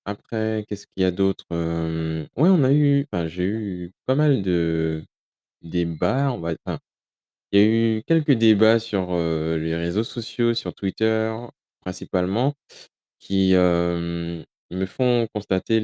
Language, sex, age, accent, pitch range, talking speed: French, male, 20-39, French, 80-105 Hz, 135 wpm